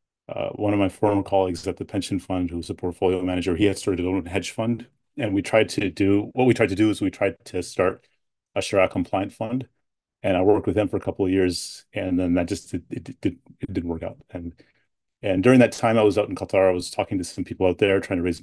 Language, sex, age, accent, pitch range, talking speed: English, male, 30-49, American, 95-115 Hz, 265 wpm